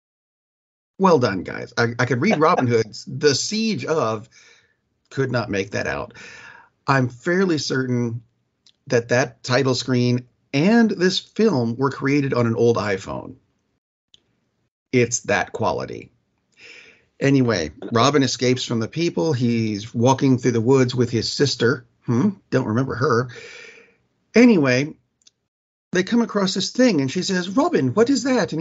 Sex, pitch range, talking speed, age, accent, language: male, 115-165 Hz, 145 wpm, 40-59, American, English